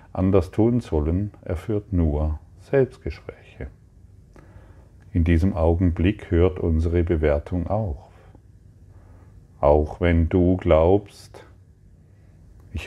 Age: 40-59